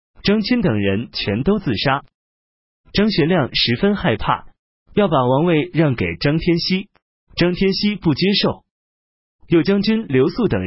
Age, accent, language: 30-49, native, Chinese